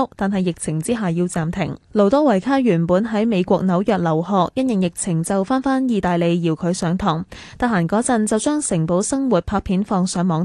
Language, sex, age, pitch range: Chinese, female, 10-29, 175-235 Hz